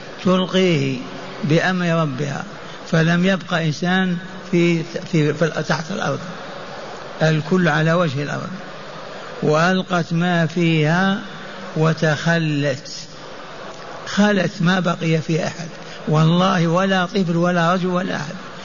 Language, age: Arabic, 60-79